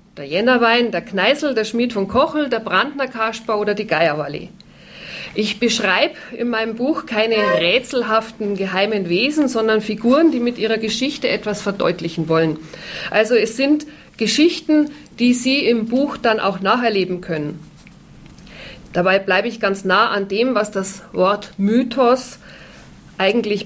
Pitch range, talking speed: 185-235 Hz, 140 wpm